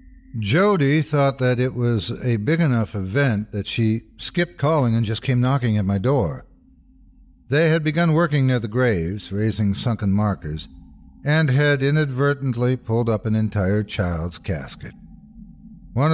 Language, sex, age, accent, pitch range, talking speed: English, male, 60-79, American, 90-140 Hz, 145 wpm